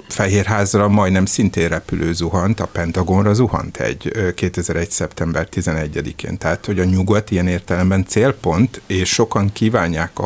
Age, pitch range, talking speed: 60-79, 90-105 Hz, 135 wpm